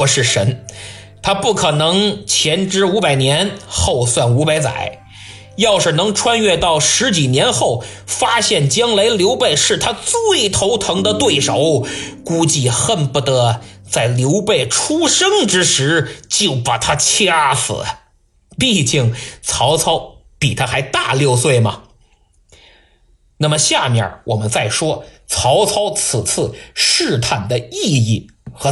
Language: Chinese